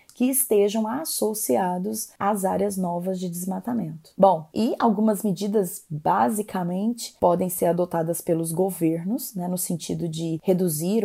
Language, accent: Portuguese, Brazilian